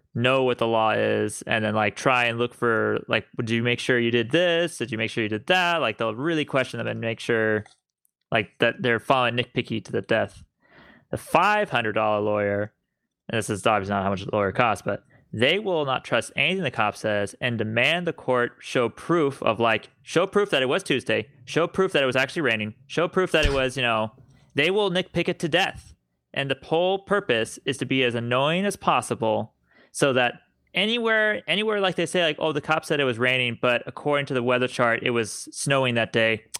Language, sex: English, male